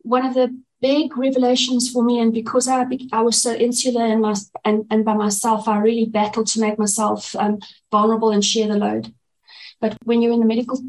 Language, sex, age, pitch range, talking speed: English, female, 30-49, 215-250 Hz, 215 wpm